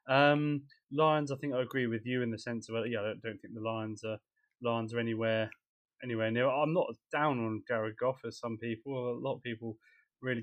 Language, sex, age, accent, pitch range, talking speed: English, male, 20-39, British, 115-140 Hz, 225 wpm